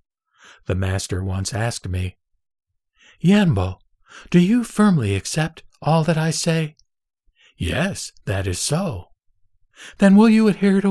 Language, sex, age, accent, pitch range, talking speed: English, male, 60-79, American, 105-165 Hz, 125 wpm